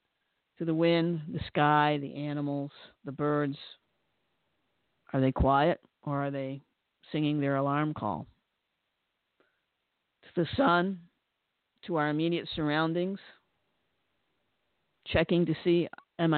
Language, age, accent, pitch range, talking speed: English, 50-69, American, 140-180 Hz, 110 wpm